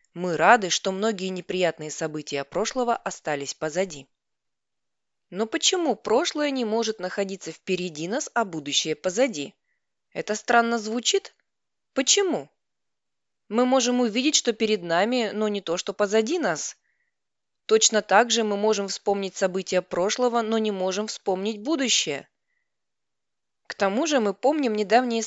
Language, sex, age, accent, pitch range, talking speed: Russian, female, 20-39, native, 185-255 Hz, 130 wpm